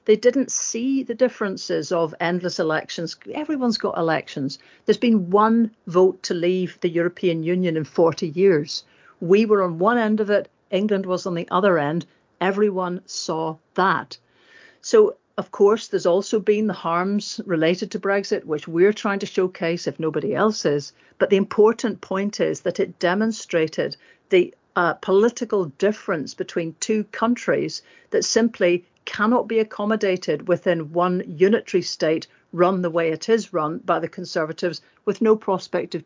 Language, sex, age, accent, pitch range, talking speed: English, female, 50-69, British, 175-220 Hz, 160 wpm